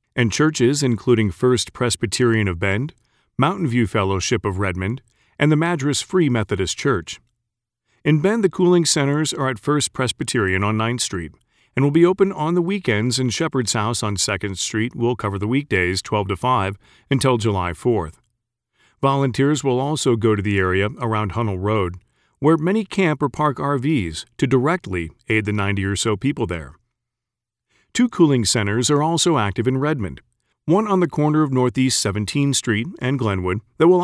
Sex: male